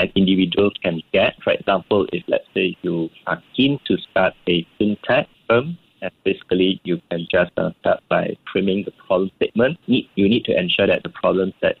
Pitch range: 90-105 Hz